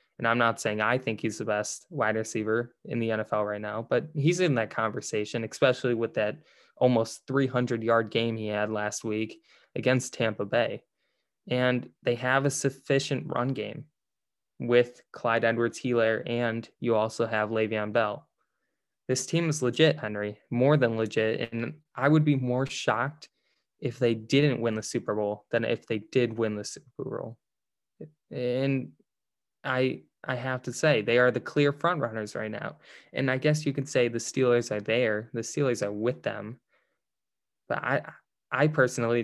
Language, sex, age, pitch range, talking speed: English, male, 10-29, 110-135 Hz, 175 wpm